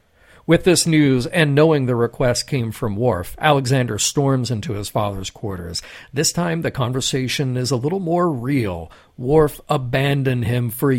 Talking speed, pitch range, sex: 160 wpm, 115-155 Hz, male